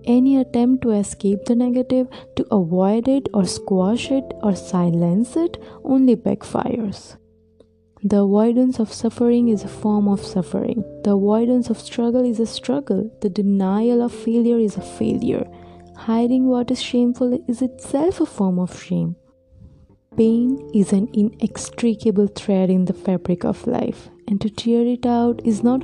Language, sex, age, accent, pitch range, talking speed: English, female, 20-39, Indian, 185-245 Hz, 155 wpm